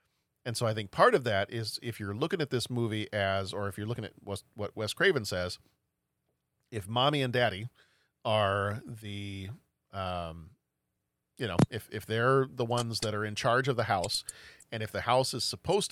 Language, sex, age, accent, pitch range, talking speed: English, male, 40-59, American, 100-130 Hz, 200 wpm